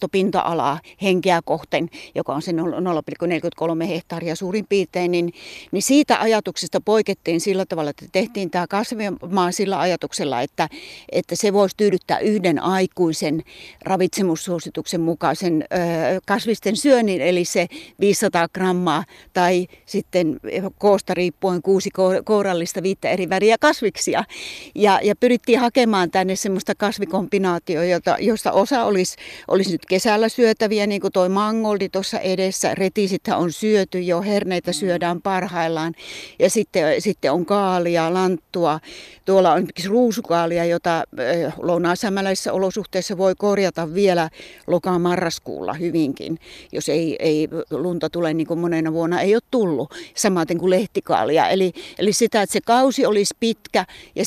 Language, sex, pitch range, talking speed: Finnish, female, 170-205 Hz, 135 wpm